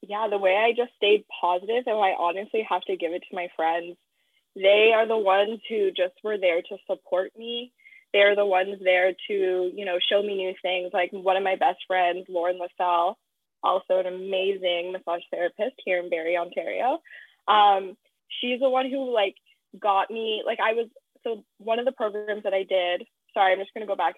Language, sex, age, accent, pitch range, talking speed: English, female, 20-39, American, 185-225 Hz, 205 wpm